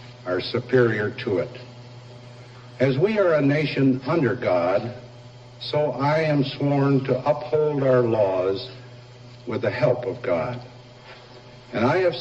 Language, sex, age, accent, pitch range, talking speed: English, male, 70-89, American, 125-130 Hz, 135 wpm